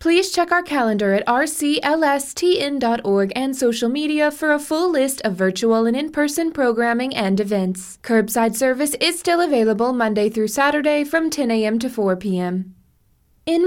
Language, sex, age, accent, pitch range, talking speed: English, female, 20-39, American, 205-275 Hz, 155 wpm